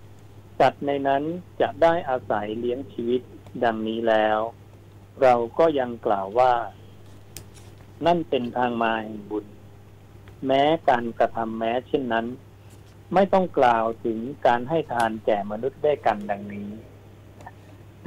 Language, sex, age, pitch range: Thai, male, 60-79, 100-125 Hz